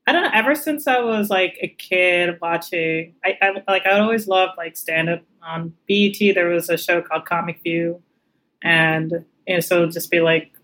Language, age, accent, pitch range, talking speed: English, 20-39, American, 165-195 Hz, 210 wpm